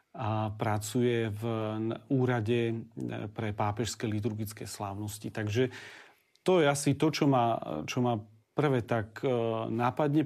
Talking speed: 110 wpm